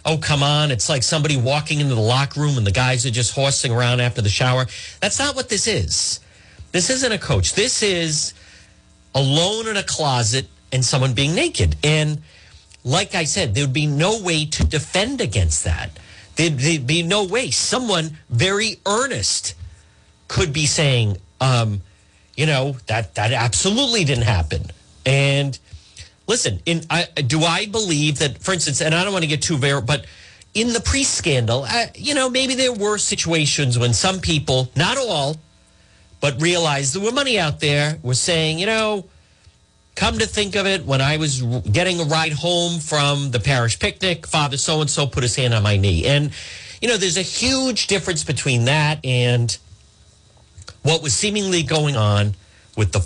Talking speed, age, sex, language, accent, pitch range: 175 wpm, 40-59, male, English, American, 115-170 Hz